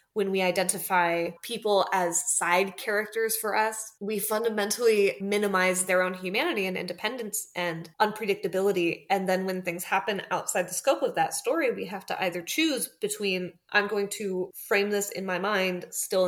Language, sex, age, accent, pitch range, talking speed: English, female, 20-39, American, 180-210 Hz, 165 wpm